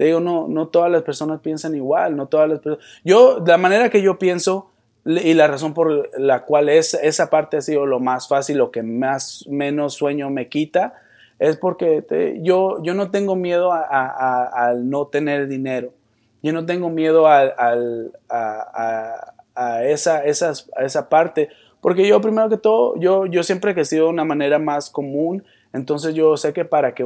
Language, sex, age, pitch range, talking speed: Spanish, male, 20-39, 140-185 Hz, 195 wpm